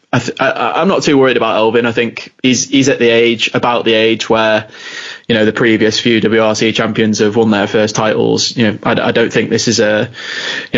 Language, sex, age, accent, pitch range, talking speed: English, male, 20-39, British, 110-115 Hz, 210 wpm